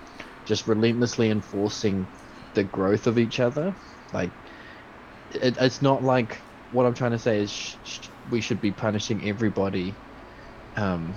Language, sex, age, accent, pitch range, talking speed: English, male, 20-39, Australian, 95-110 Hz, 145 wpm